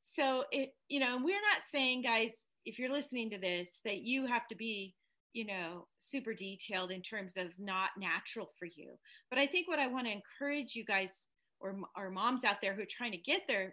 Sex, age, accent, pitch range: female, 30-49, American, 195-270 Hz